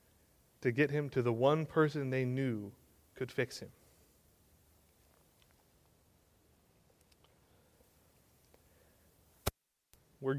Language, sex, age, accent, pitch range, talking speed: English, male, 20-39, American, 110-145 Hz, 75 wpm